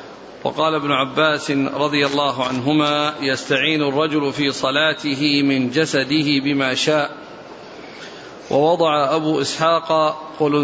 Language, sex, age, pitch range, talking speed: Arabic, male, 50-69, 145-160 Hz, 100 wpm